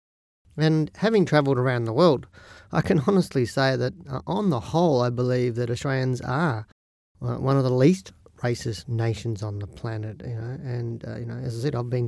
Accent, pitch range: Australian, 115-135 Hz